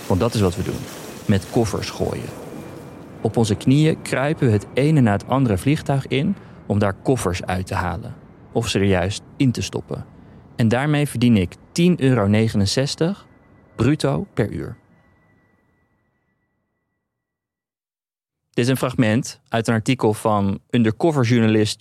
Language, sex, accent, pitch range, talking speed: Dutch, male, Dutch, 105-135 Hz, 145 wpm